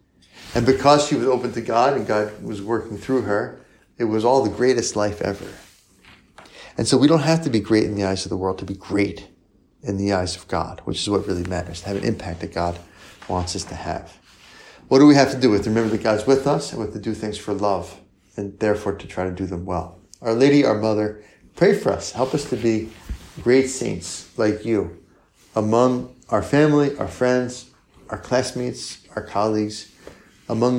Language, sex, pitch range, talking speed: English, male, 100-125 Hz, 210 wpm